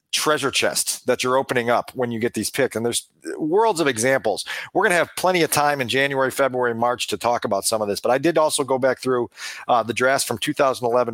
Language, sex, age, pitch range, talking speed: English, male, 40-59, 125-160 Hz, 235 wpm